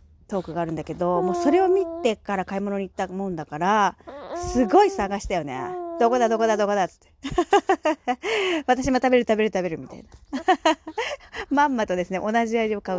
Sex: female